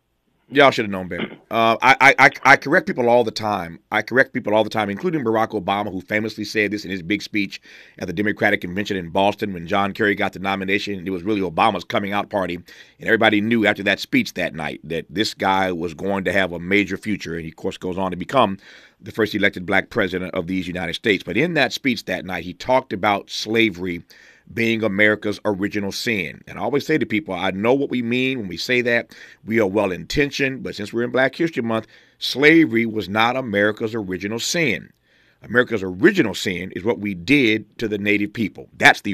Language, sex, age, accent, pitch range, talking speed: English, male, 40-59, American, 95-115 Hz, 220 wpm